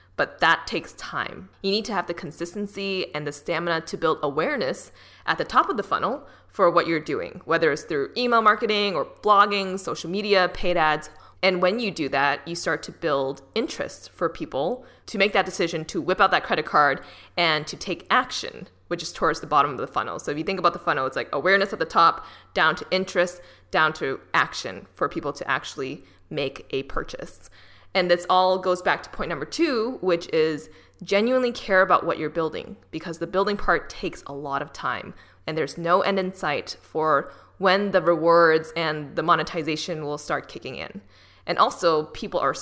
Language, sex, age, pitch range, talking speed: English, female, 20-39, 160-195 Hz, 205 wpm